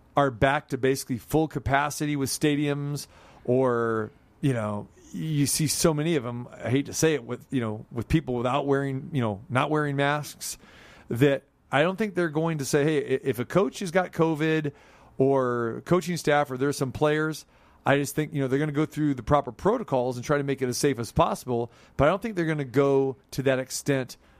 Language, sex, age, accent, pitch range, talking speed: English, male, 40-59, American, 125-150 Hz, 220 wpm